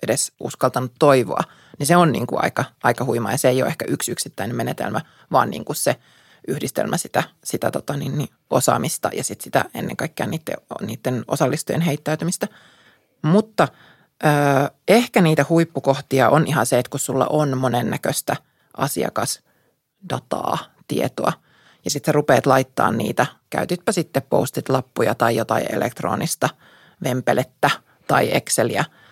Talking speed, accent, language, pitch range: 140 wpm, native, Finnish, 130-160 Hz